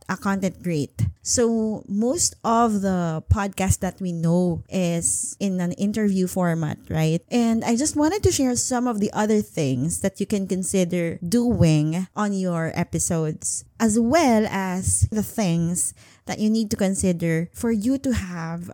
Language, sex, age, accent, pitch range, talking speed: English, female, 20-39, Filipino, 175-235 Hz, 155 wpm